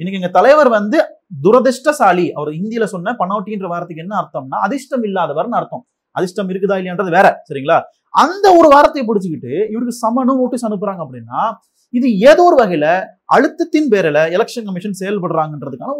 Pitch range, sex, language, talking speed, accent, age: 170-240 Hz, male, Tamil, 140 wpm, native, 30-49